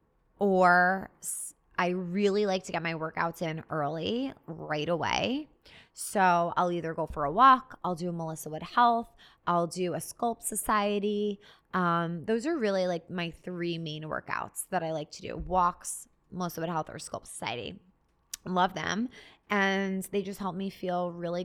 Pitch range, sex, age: 170-195 Hz, female, 20-39